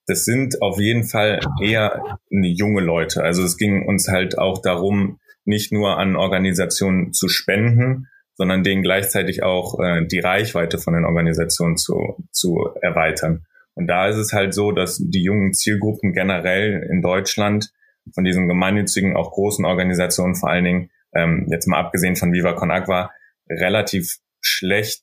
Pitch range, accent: 90-100 Hz, German